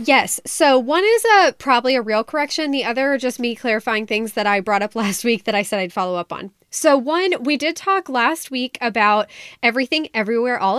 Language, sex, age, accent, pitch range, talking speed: English, female, 10-29, American, 210-275 Hz, 225 wpm